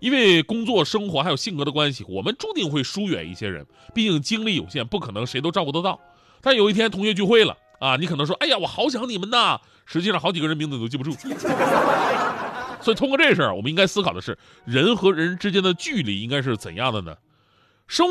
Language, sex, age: Chinese, male, 30-49